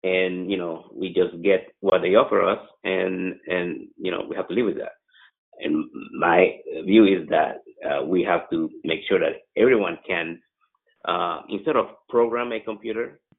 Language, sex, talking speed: English, male, 180 wpm